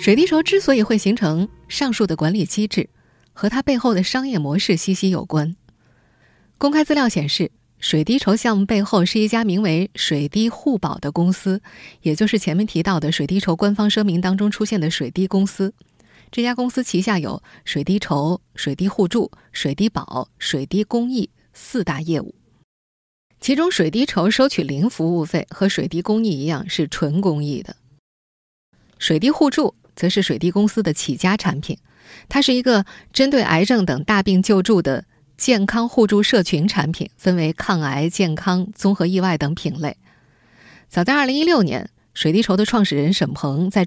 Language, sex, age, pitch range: Chinese, female, 20-39, 165-220 Hz